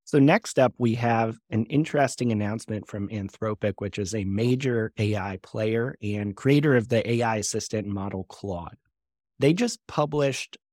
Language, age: English, 30-49